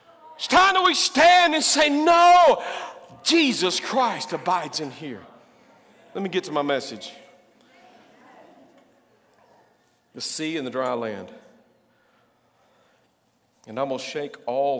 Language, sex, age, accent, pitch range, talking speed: English, male, 50-69, American, 125-180 Hz, 120 wpm